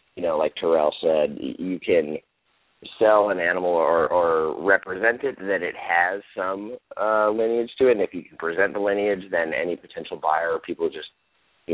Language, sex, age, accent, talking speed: English, male, 30-49, American, 190 wpm